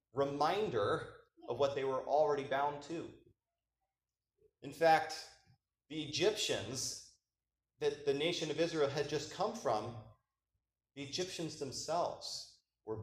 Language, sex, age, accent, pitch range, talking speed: English, male, 30-49, American, 120-175 Hz, 115 wpm